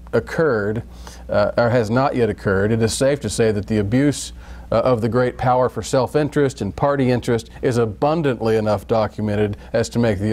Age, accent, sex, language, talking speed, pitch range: 50-69, American, male, English, 190 wpm, 105-135 Hz